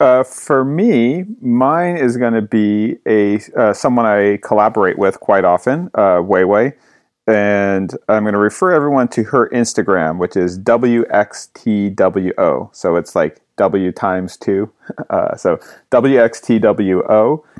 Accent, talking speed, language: American, 135 wpm, English